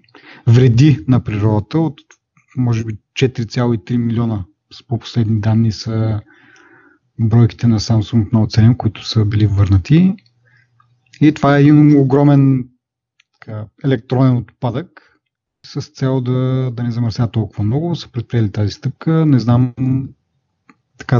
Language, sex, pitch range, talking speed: Bulgarian, male, 115-135 Hz, 125 wpm